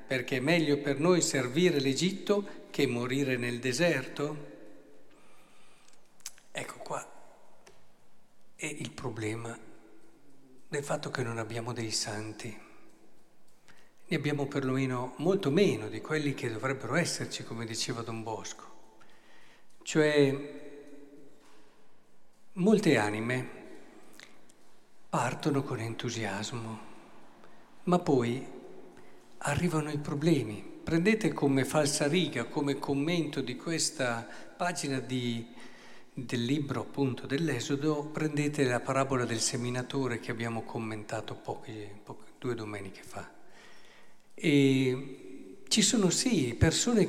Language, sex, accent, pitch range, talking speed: Italian, male, native, 120-150 Hz, 100 wpm